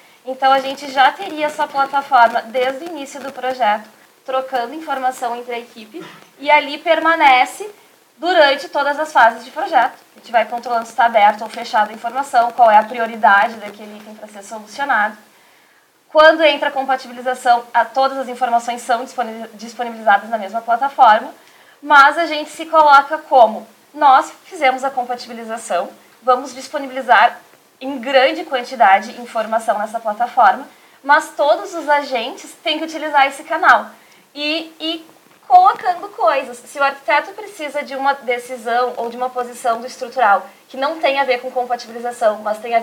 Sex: female